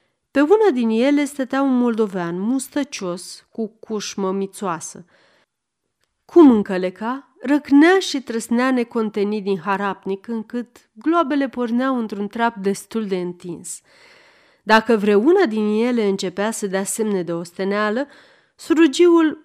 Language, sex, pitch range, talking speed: Romanian, female, 195-280 Hz, 120 wpm